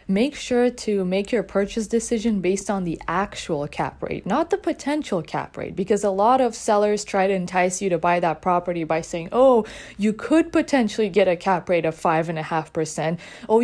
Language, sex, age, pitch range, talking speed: English, female, 20-39, 175-225 Hz, 210 wpm